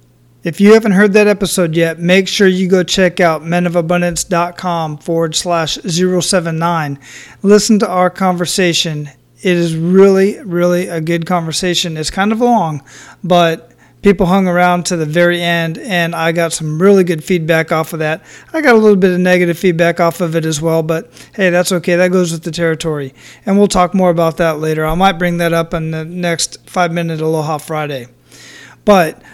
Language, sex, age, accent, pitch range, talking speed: English, male, 40-59, American, 165-190 Hz, 185 wpm